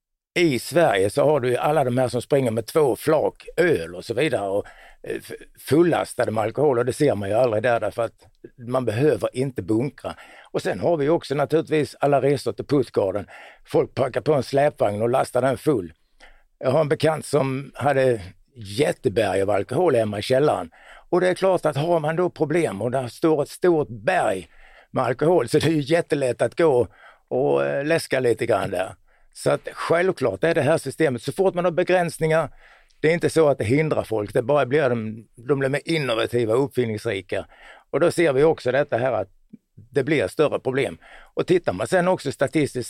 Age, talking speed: 60-79, 200 wpm